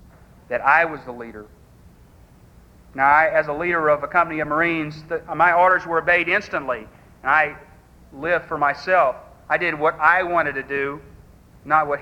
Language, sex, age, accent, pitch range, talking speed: English, male, 40-59, American, 140-170 Hz, 175 wpm